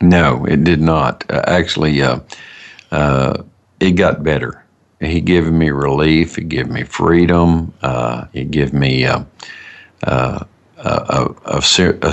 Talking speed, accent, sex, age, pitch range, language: 140 wpm, American, male, 50-69, 70-90 Hz, English